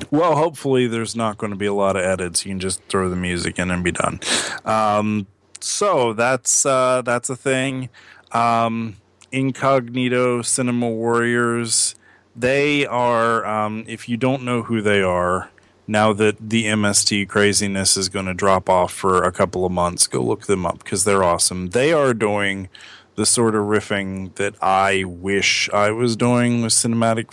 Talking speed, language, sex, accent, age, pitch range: 175 wpm, English, male, American, 30-49, 100-115 Hz